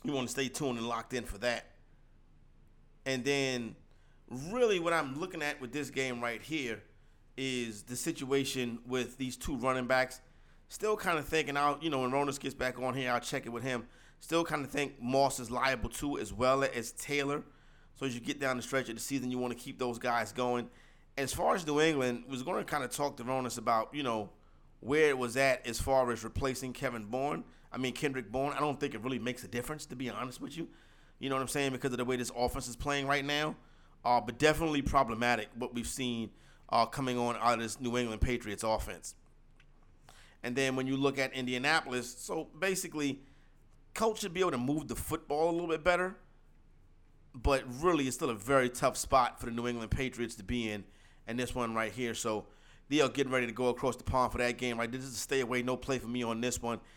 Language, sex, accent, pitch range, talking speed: English, male, American, 120-140 Hz, 230 wpm